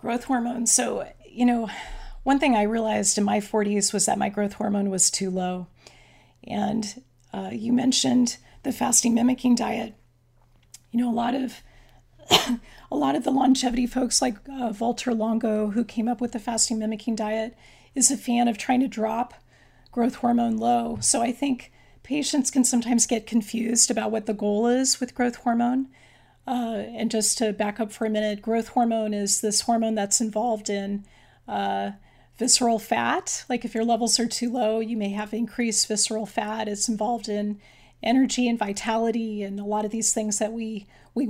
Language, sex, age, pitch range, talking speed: English, female, 30-49, 210-245 Hz, 180 wpm